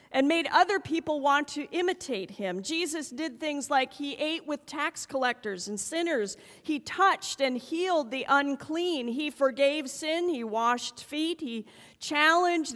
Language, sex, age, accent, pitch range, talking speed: English, female, 40-59, American, 260-320 Hz, 155 wpm